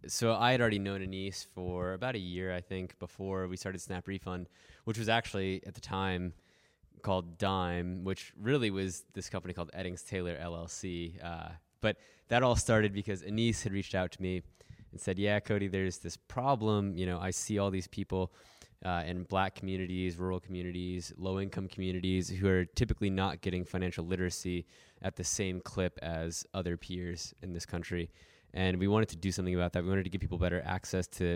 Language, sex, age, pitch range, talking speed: English, male, 20-39, 90-100 Hz, 195 wpm